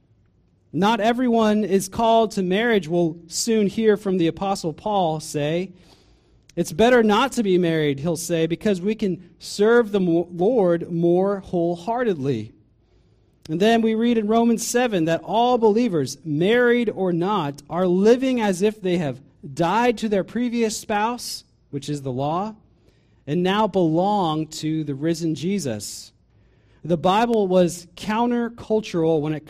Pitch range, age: 135-205 Hz, 40-59